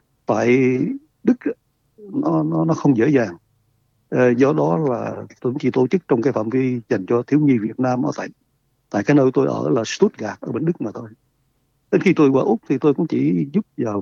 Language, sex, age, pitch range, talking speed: Vietnamese, male, 60-79, 115-150 Hz, 215 wpm